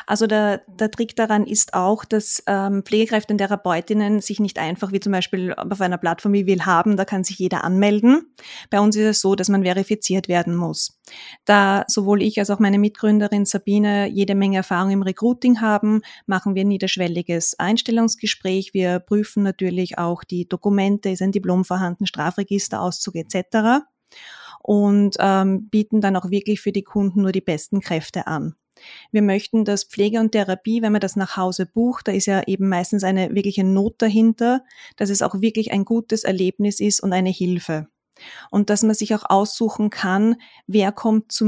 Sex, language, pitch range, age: female, German, 190-215 Hz, 20-39